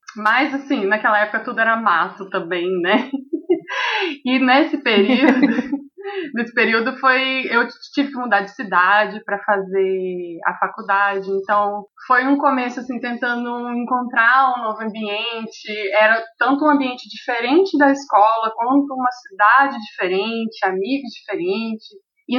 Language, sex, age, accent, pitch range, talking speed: Portuguese, female, 20-39, Brazilian, 205-280 Hz, 130 wpm